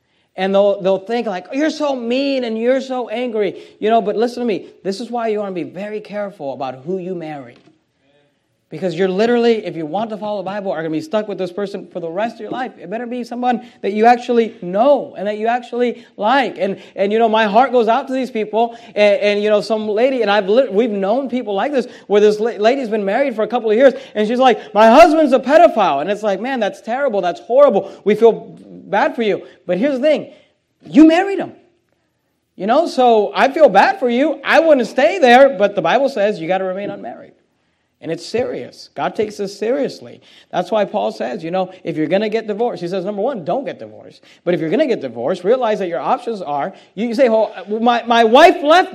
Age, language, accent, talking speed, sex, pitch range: 40-59, English, American, 245 wpm, male, 190-250 Hz